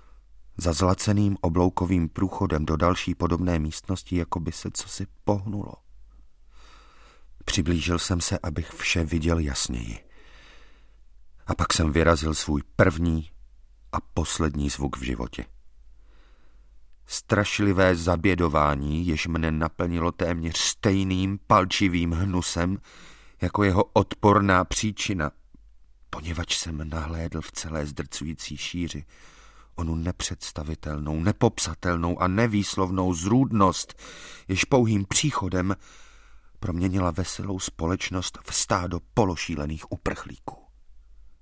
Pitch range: 75-95 Hz